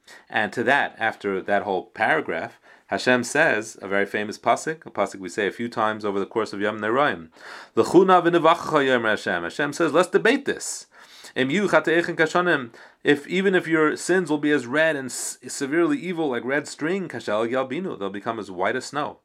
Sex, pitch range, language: male, 110-170 Hz, English